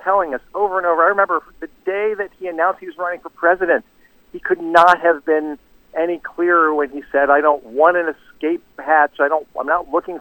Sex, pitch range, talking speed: male, 145-190 Hz, 225 wpm